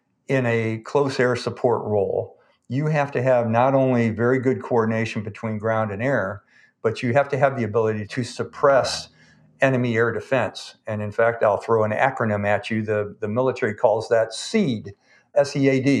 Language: English